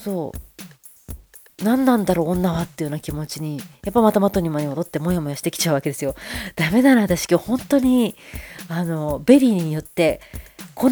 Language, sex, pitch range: Japanese, female, 155-210 Hz